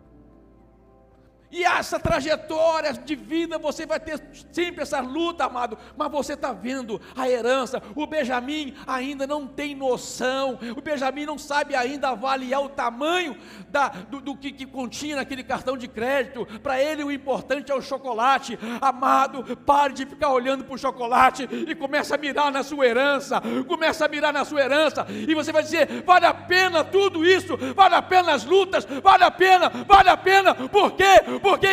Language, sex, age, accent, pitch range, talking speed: Portuguese, male, 60-79, Brazilian, 250-315 Hz, 175 wpm